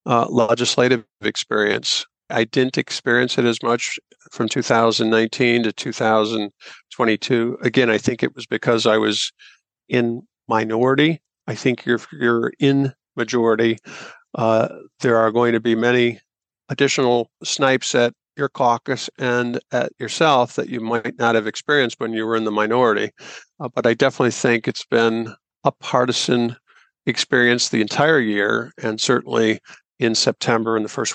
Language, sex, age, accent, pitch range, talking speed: English, male, 50-69, American, 115-125 Hz, 145 wpm